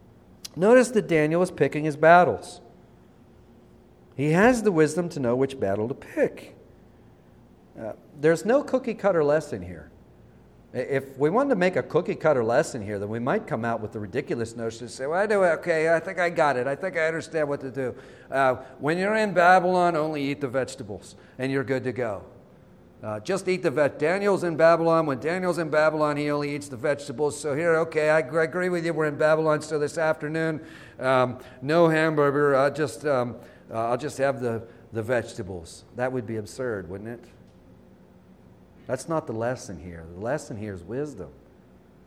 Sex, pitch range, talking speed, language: male, 115-165 Hz, 195 wpm, English